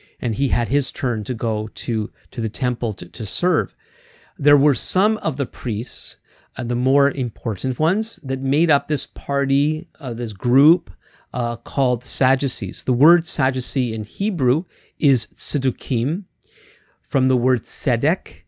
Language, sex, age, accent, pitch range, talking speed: English, male, 50-69, American, 120-145 Hz, 155 wpm